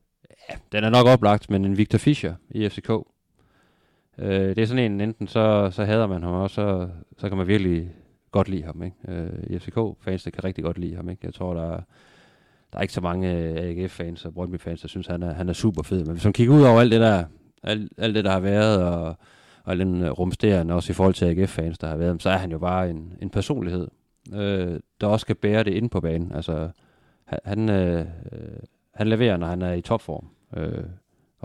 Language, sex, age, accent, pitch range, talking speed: Danish, male, 30-49, native, 85-105 Hz, 225 wpm